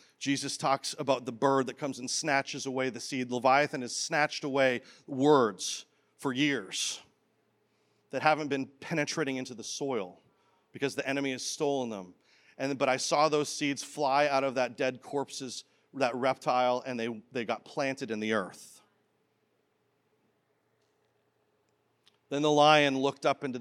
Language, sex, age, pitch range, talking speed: English, male, 40-59, 120-140 Hz, 155 wpm